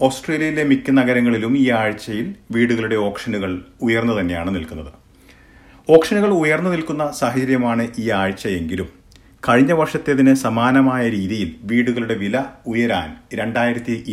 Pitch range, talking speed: 100-130 Hz, 100 wpm